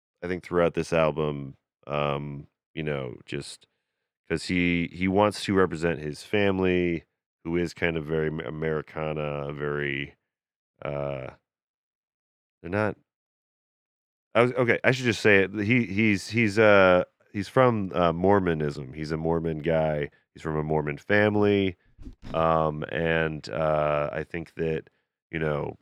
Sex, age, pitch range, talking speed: male, 30-49, 75-95 Hz, 140 wpm